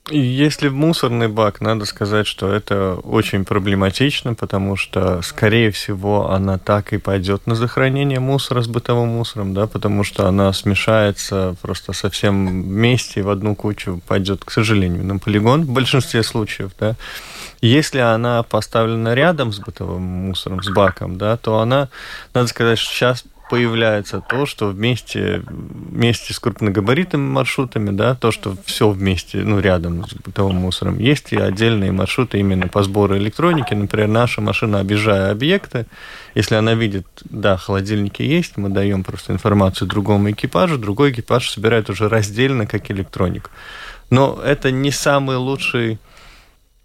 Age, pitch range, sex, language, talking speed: 20-39, 100-125 Hz, male, Russian, 150 wpm